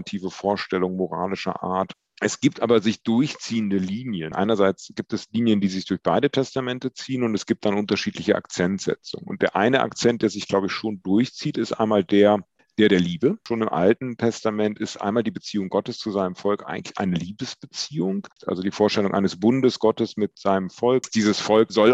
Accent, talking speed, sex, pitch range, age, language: German, 185 wpm, male, 100-115 Hz, 40-59, German